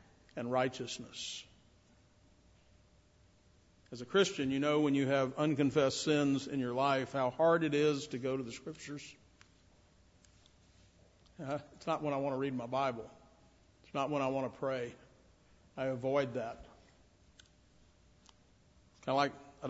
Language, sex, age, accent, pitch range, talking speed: English, male, 50-69, American, 120-150 Hz, 135 wpm